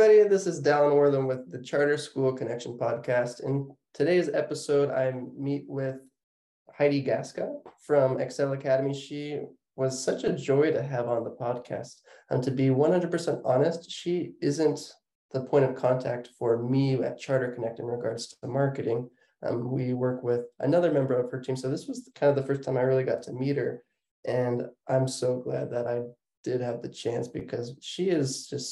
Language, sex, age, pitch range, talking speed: English, male, 20-39, 125-140 Hz, 190 wpm